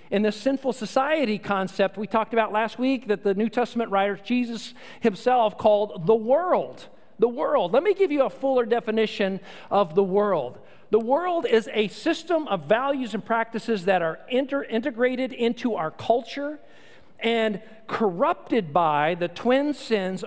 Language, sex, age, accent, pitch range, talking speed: English, male, 50-69, American, 200-255 Hz, 155 wpm